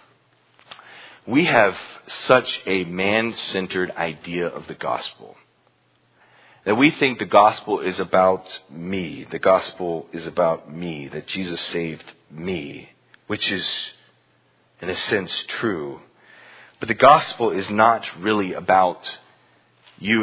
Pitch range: 95-130 Hz